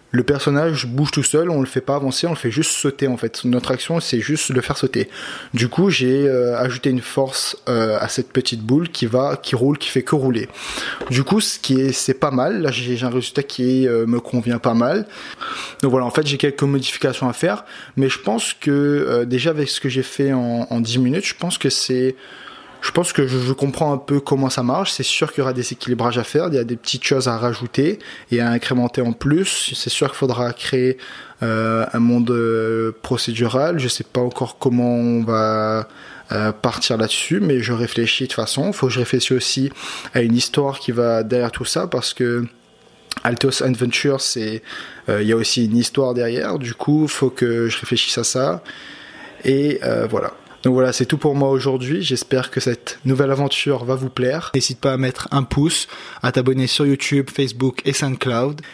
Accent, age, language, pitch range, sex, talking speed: French, 20-39, French, 120-140 Hz, male, 220 wpm